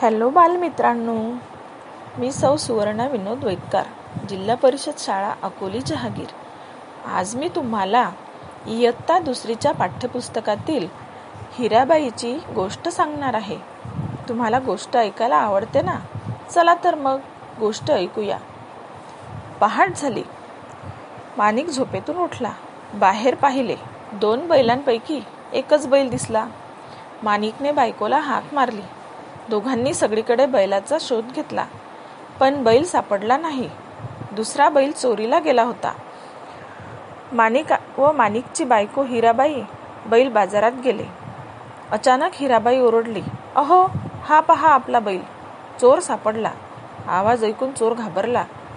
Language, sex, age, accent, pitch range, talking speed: Marathi, female, 40-59, native, 220-280 Hz, 105 wpm